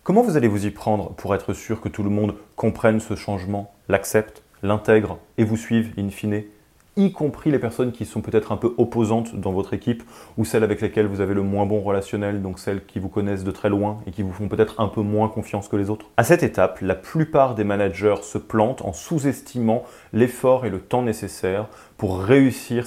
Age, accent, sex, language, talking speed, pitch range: 20-39, French, male, French, 220 wpm, 100-115 Hz